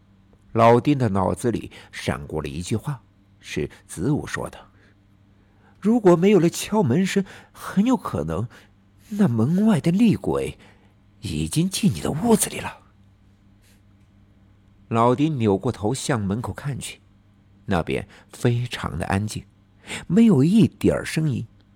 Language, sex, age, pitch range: Chinese, male, 50-69, 100-125 Hz